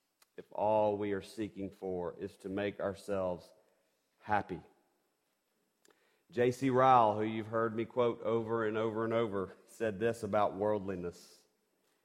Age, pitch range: 40-59, 100-135 Hz